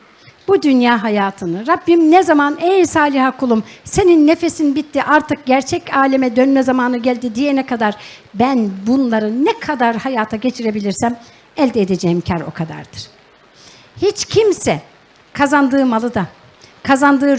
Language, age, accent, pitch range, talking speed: Turkish, 60-79, native, 215-300 Hz, 130 wpm